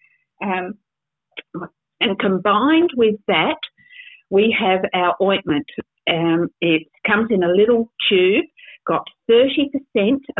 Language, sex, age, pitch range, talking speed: English, female, 50-69, 175-220 Hz, 105 wpm